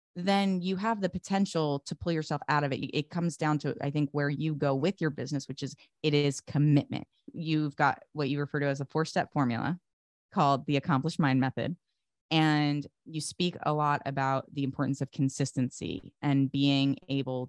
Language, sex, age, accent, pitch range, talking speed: English, female, 20-39, American, 130-150 Hz, 190 wpm